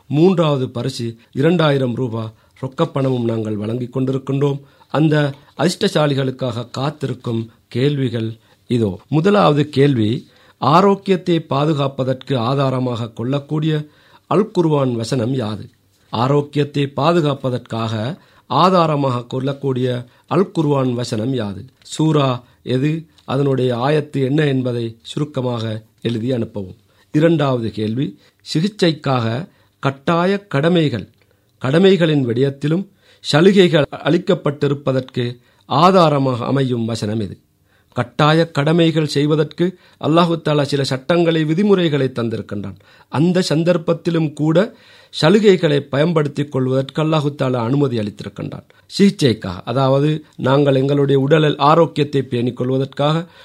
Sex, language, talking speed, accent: male, Tamil, 85 wpm, native